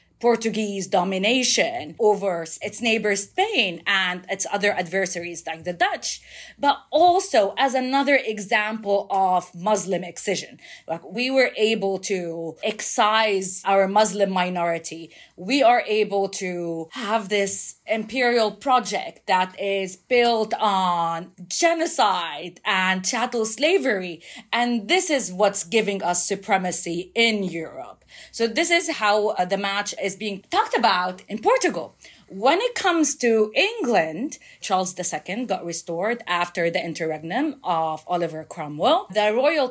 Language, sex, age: English, female, 30-49